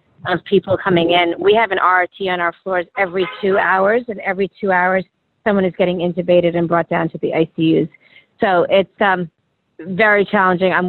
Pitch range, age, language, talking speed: 180-215 Hz, 30-49, English, 185 wpm